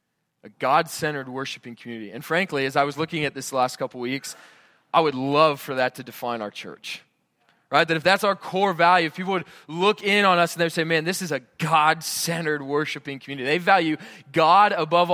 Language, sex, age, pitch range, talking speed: English, male, 20-39, 140-170 Hz, 215 wpm